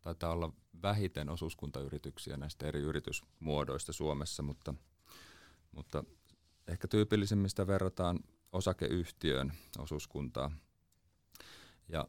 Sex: male